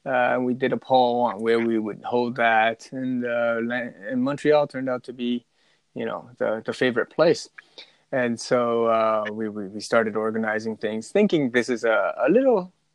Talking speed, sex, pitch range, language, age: 180 wpm, male, 110-135 Hz, English, 20-39